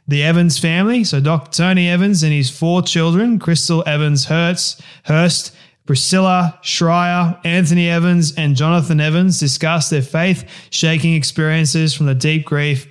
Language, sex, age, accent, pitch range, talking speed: English, male, 20-39, Australian, 140-165 Hz, 130 wpm